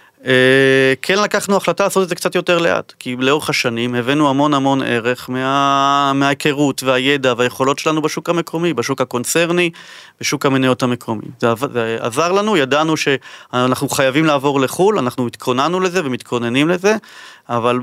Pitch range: 120-150 Hz